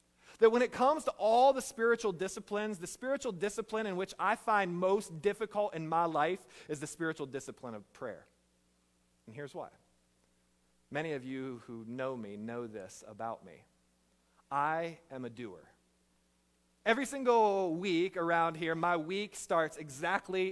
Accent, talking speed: American, 155 wpm